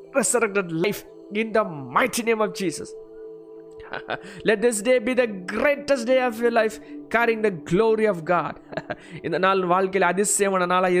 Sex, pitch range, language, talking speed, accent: male, 180-210 Hz, Tamil, 175 wpm, native